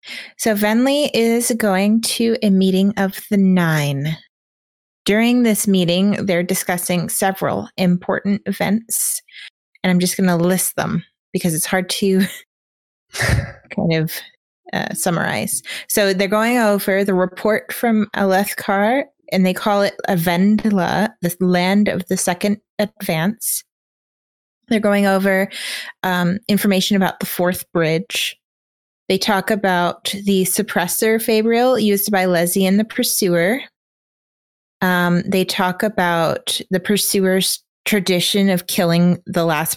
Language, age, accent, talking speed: English, 20-39, American, 125 wpm